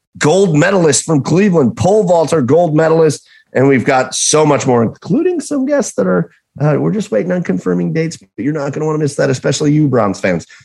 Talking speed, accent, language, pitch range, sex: 220 wpm, American, English, 105-150 Hz, male